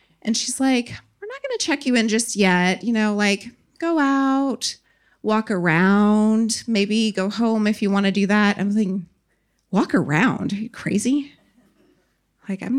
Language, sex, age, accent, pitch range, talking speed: English, female, 30-49, American, 190-245 Hz, 175 wpm